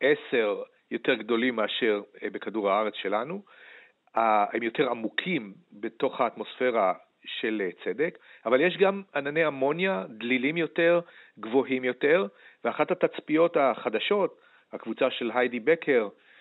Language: Hebrew